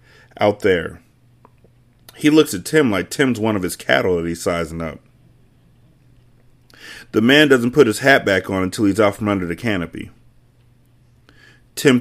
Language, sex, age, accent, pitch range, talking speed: English, male, 40-59, American, 105-125 Hz, 160 wpm